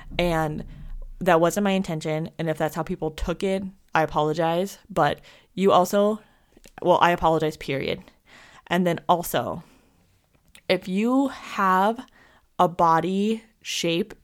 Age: 20-39